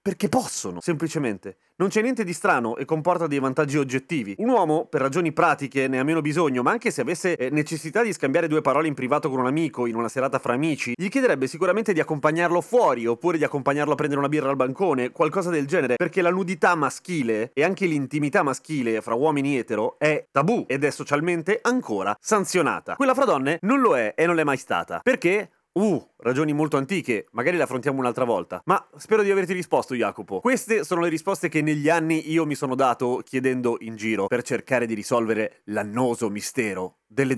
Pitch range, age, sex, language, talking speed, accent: 130-180 Hz, 30-49, male, Italian, 200 wpm, native